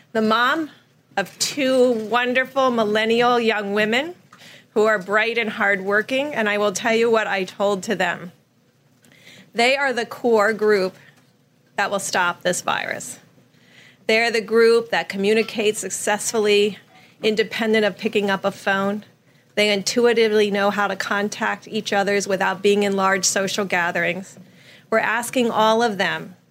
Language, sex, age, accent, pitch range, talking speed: English, female, 40-59, American, 190-225 Hz, 145 wpm